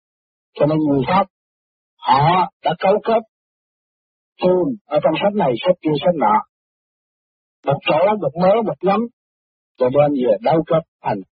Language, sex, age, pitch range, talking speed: Vietnamese, male, 60-79, 130-180 Hz, 150 wpm